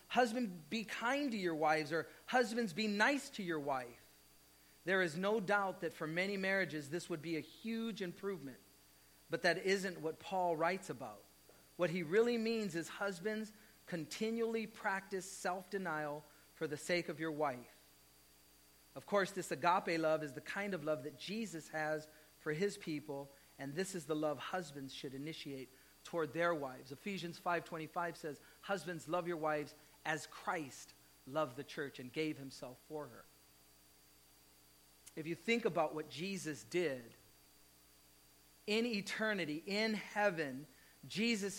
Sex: male